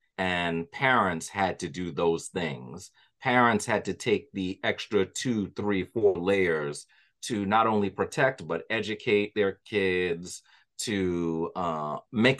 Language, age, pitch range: English, 30-49, 95-120 Hz